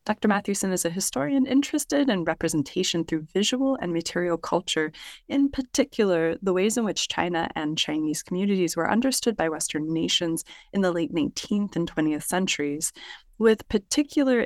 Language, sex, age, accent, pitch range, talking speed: English, female, 20-39, American, 160-220 Hz, 155 wpm